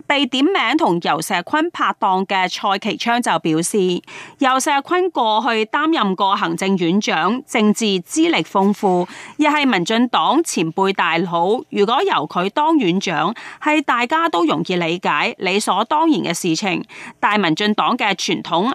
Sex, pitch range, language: female, 185-265 Hz, Chinese